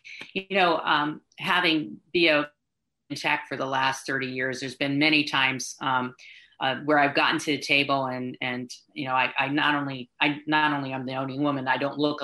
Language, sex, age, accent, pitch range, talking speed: English, female, 30-49, American, 135-160 Hz, 205 wpm